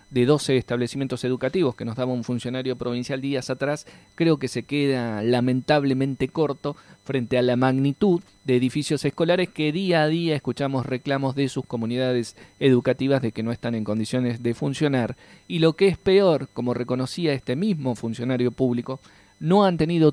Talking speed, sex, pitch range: 170 wpm, male, 120-155 Hz